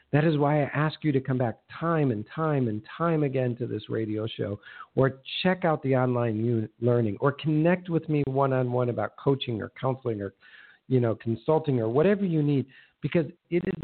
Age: 50-69